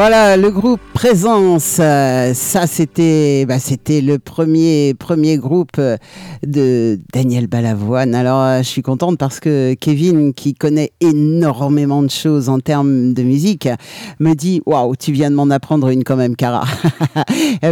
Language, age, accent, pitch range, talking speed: French, 50-69, French, 130-160 Hz, 150 wpm